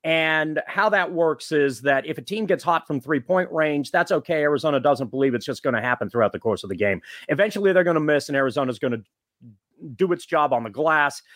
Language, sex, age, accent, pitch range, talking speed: English, male, 40-59, American, 135-170 Hz, 245 wpm